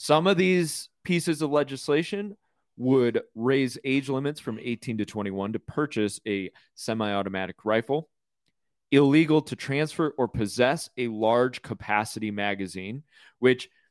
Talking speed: 125 wpm